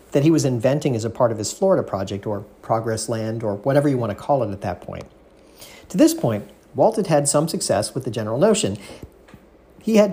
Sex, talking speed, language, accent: male, 225 wpm, English, American